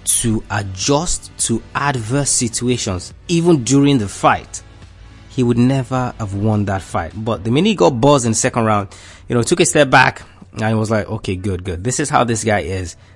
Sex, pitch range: male, 100-125 Hz